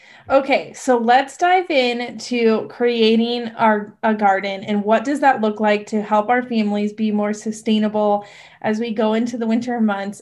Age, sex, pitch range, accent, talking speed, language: 20-39, female, 215-265 Hz, American, 175 wpm, English